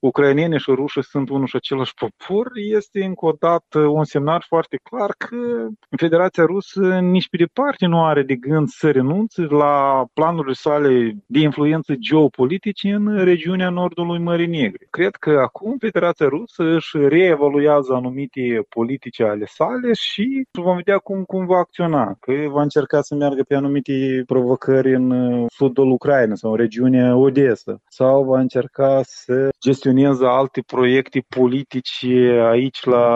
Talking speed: 150 wpm